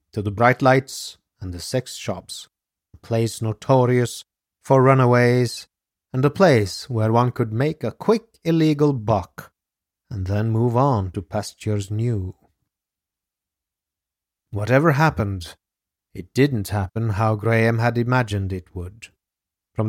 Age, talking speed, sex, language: 30-49, 130 wpm, male, English